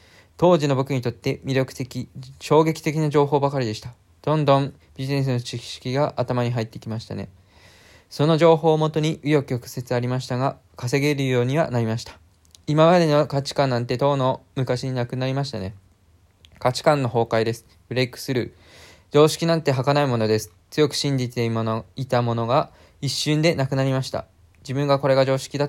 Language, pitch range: Japanese, 115-145 Hz